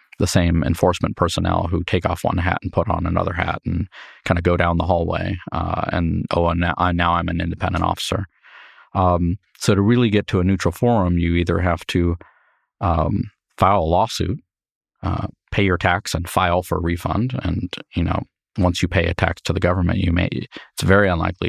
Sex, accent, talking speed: male, American, 205 wpm